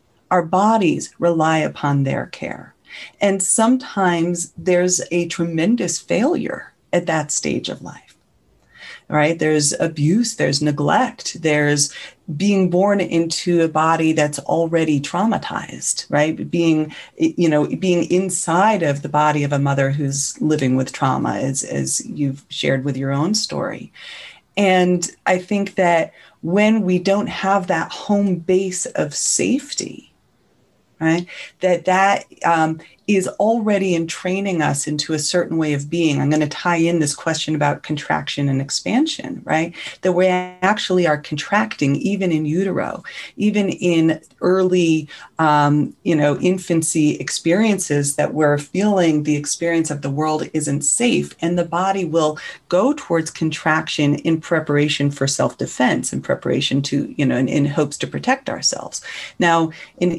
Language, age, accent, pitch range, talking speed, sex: English, 30-49, American, 150-185 Hz, 145 wpm, female